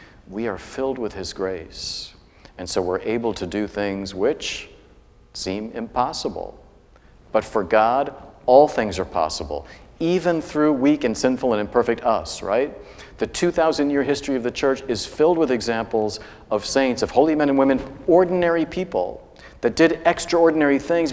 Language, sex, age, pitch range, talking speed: English, male, 50-69, 95-125 Hz, 155 wpm